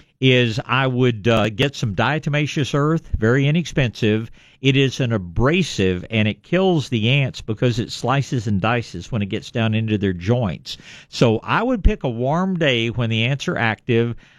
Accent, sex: American, male